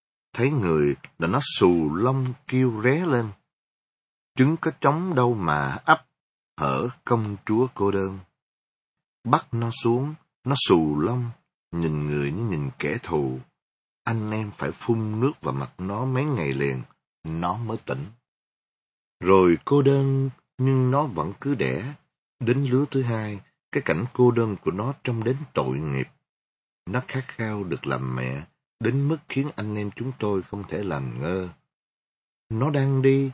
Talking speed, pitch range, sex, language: 160 wpm, 95-135 Hz, male, Vietnamese